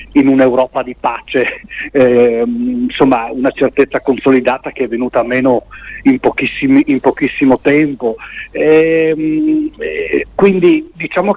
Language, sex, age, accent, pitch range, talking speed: Italian, male, 40-59, native, 130-175 Hz, 115 wpm